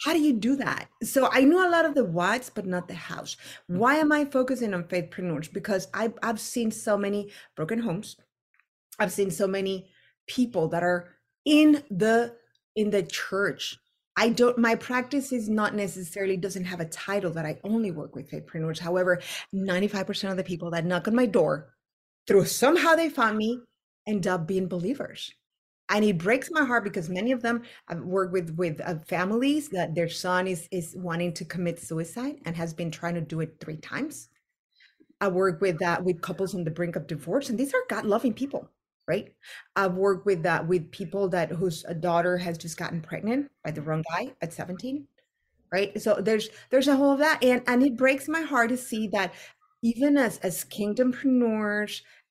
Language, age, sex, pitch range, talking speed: English, 30-49, female, 180-245 Hz, 200 wpm